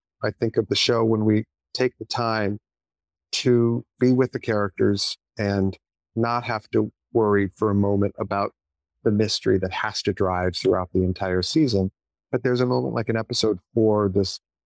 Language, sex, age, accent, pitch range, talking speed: English, male, 40-59, American, 95-110 Hz, 175 wpm